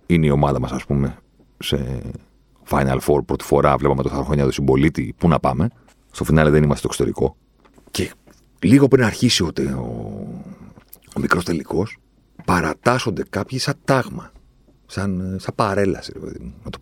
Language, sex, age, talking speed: Greek, male, 50-69, 155 wpm